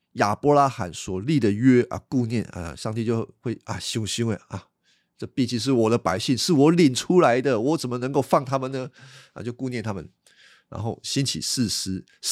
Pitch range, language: 110-140 Hz, Chinese